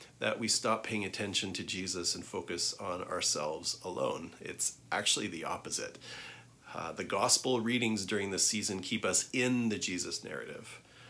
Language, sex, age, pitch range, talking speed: English, male, 40-59, 100-125 Hz, 155 wpm